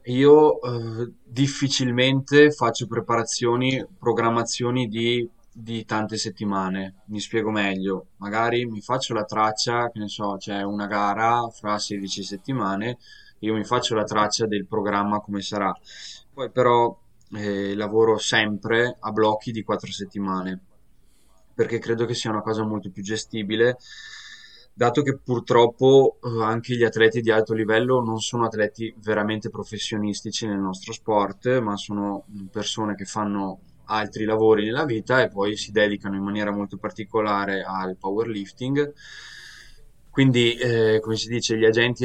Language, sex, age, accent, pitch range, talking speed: Italian, male, 10-29, native, 105-120 Hz, 140 wpm